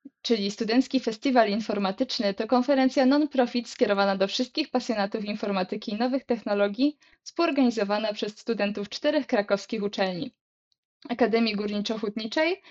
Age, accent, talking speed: 20-39, native, 115 wpm